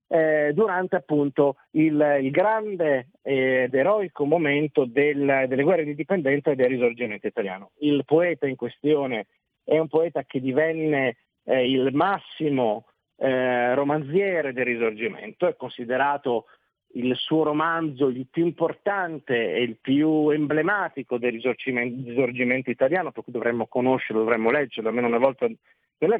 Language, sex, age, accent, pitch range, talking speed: Italian, male, 50-69, native, 125-160 Hz, 135 wpm